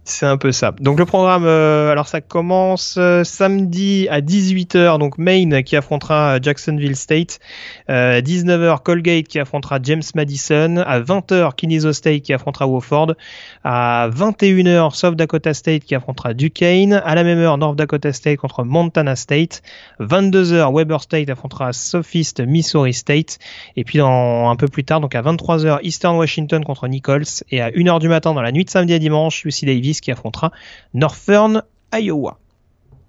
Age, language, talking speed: 30-49, French, 165 wpm